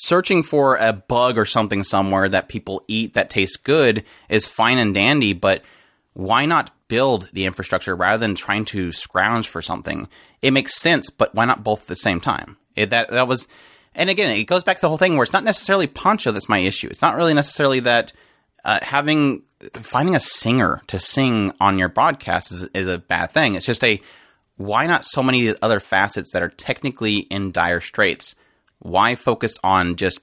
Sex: male